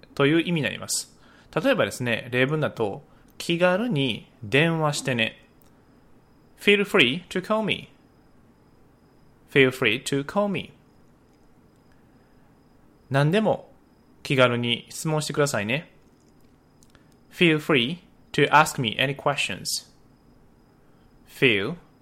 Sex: male